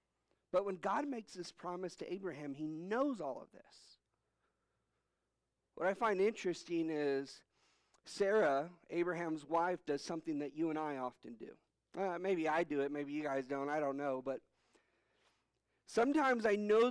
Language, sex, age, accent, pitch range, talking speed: English, male, 50-69, American, 150-185 Hz, 160 wpm